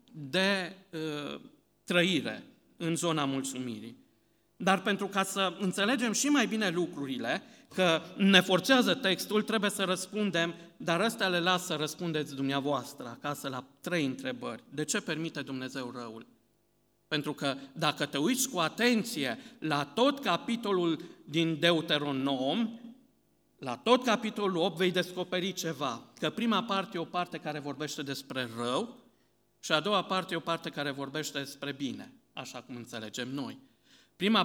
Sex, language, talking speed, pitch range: male, Romanian, 145 wpm, 140-195 Hz